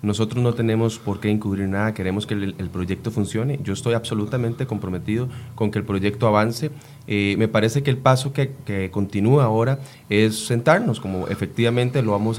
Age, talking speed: 30-49, 185 wpm